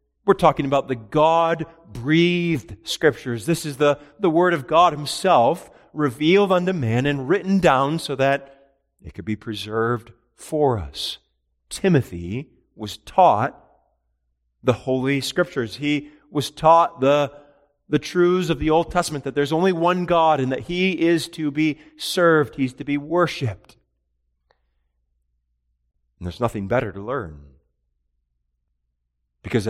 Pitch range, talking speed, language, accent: 100-150 Hz, 135 wpm, English, American